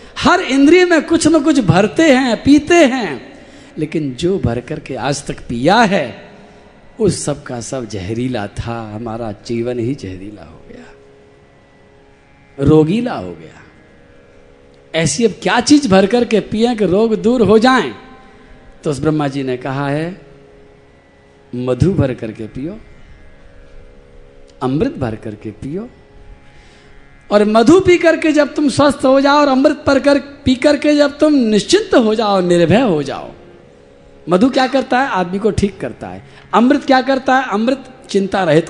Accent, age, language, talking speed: native, 50-69, Hindi, 155 wpm